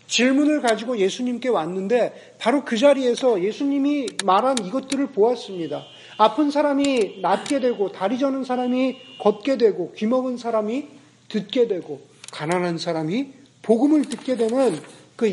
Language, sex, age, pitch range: Korean, male, 40-59, 195-275 Hz